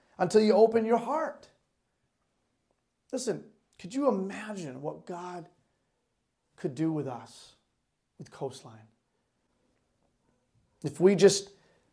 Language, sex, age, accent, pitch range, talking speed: English, male, 40-59, American, 140-185 Hz, 100 wpm